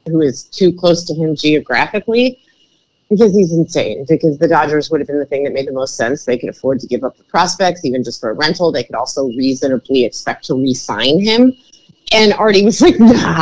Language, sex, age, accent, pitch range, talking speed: English, female, 30-49, American, 160-230 Hz, 220 wpm